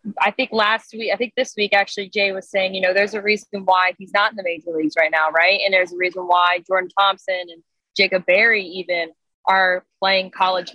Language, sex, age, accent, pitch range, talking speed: English, female, 20-39, American, 185-215 Hz, 230 wpm